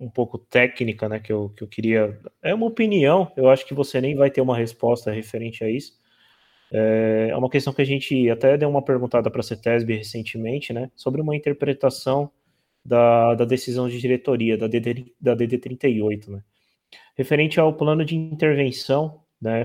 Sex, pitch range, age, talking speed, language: male, 115-145 Hz, 20-39, 175 wpm, Portuguese